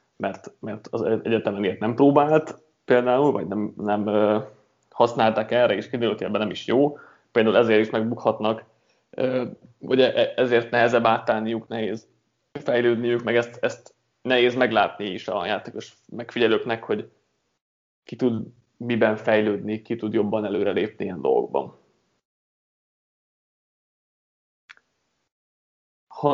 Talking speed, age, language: 115 wpm, 20-39, Hungarian